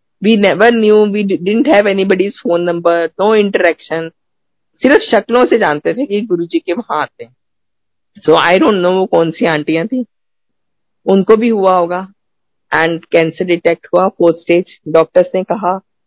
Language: Hindi